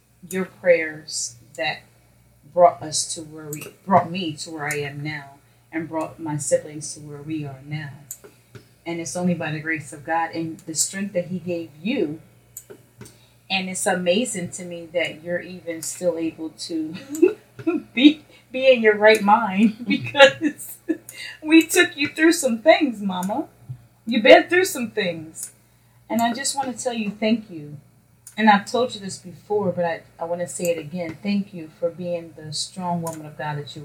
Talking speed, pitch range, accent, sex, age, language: 185 wpm, 150-195 Hz, American, female, 30-49, English